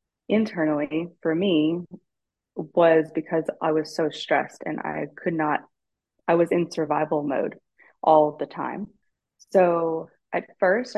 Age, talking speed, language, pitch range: 20-39, 130 wpm, English, 150-170 Hz